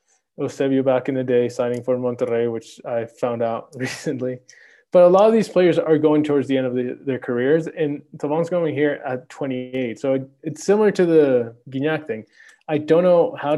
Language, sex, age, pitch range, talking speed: English, male, 20-39, 120-150 Hz, 205 wpm